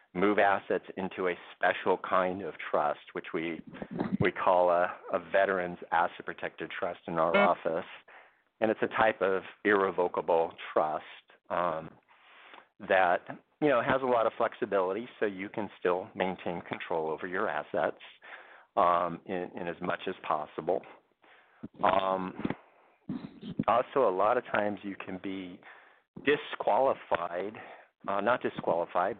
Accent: American